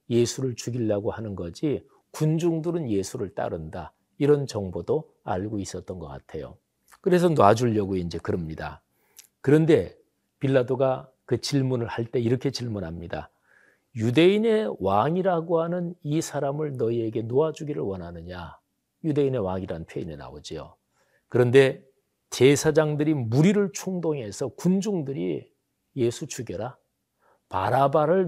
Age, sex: 40-59, male